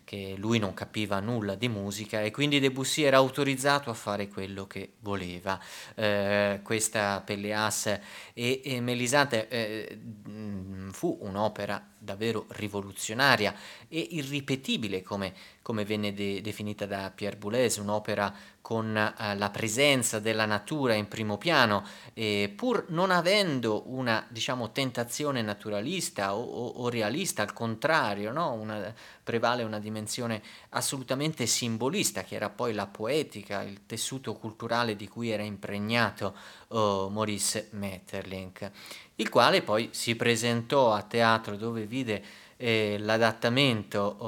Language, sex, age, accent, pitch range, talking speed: Italian, male, 30-49, native, 100-120 Hz, 120 wpm